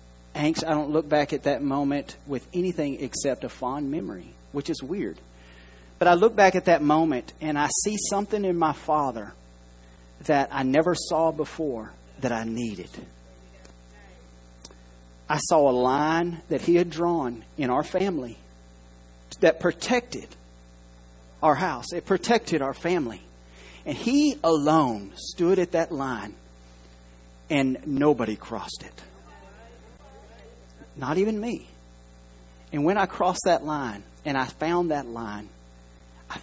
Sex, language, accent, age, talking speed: male, English, American, 40-59, 140 wpm